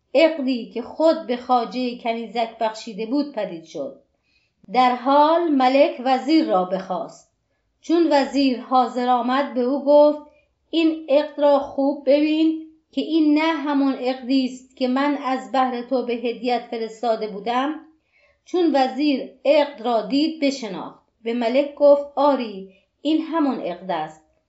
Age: 30-49